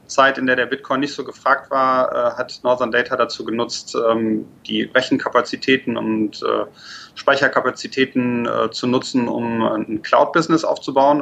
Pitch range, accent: 115-150 Hz, German